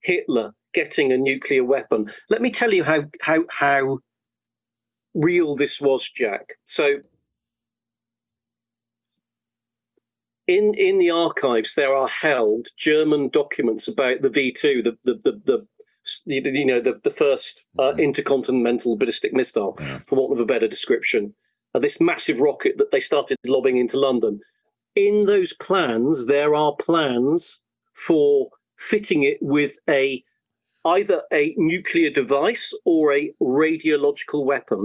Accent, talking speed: British, 135 wpm